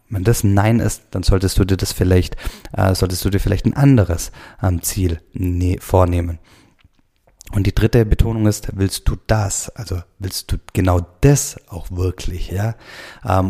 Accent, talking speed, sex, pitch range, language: German, 160 wpm, male, 90-105 Hz, German